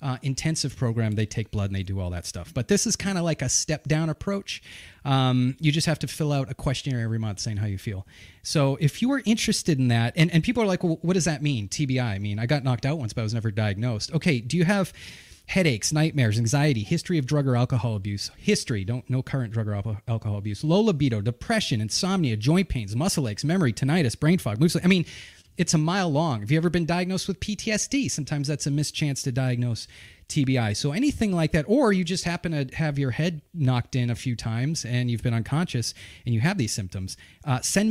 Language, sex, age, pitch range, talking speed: English, male, 30-49, 115-160 Hz, 240 wpm